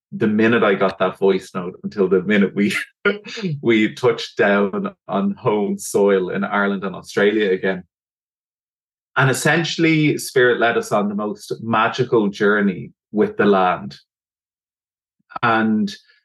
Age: 20-39